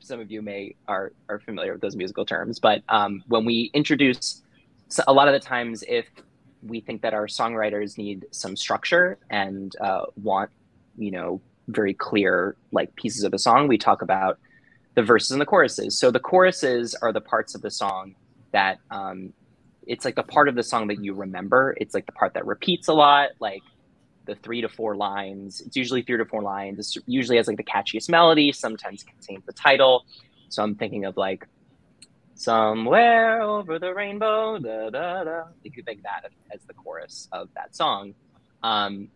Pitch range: 100-145 Hz